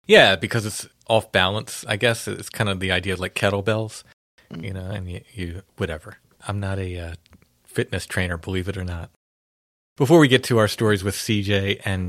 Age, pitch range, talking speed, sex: 30-49, 95-115 Hz, 185 wpm, male